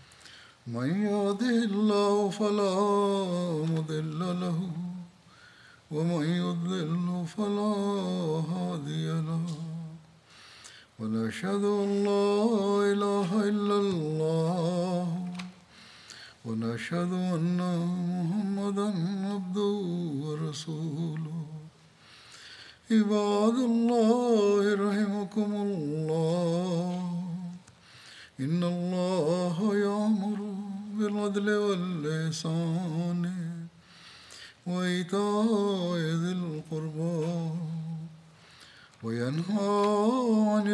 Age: 60-79